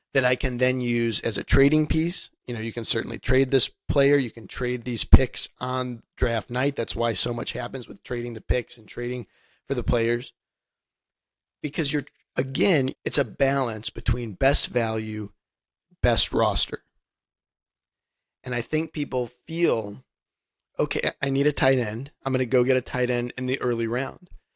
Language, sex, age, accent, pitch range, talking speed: English, male, 50-69, American, 115-135 Hz, 180 wpm